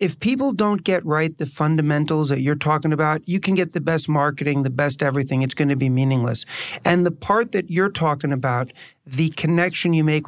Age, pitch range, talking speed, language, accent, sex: 40-59, 145-175 Hz, 210 wpm, English, American, male